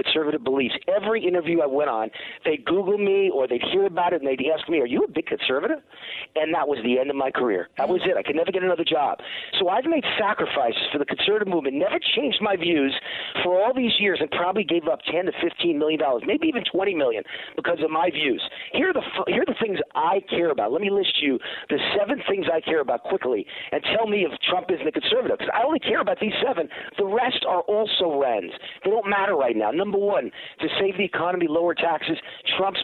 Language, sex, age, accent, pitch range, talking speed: English, male, 40-59, American, 165-225 Hz, 235 wpm